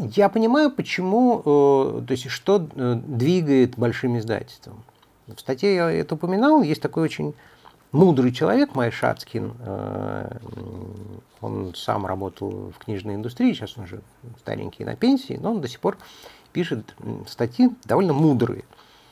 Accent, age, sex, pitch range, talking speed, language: native, 50-69, male, 115-165 Hz, 130 wpm, Russian